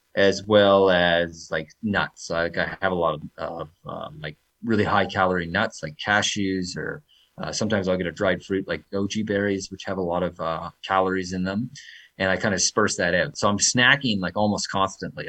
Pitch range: 90-105 Hz